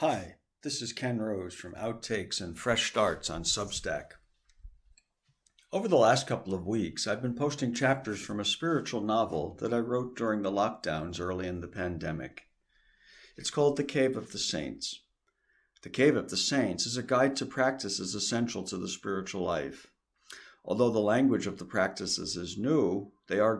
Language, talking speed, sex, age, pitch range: English, 175 wpm, male, 60-79, 95-125 Hz